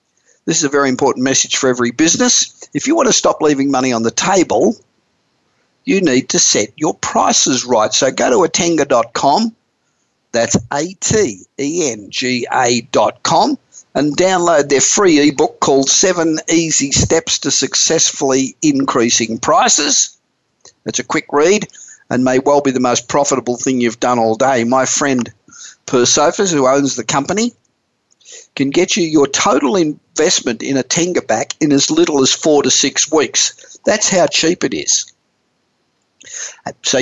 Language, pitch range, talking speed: English, 125-160 Hz, 150 wpm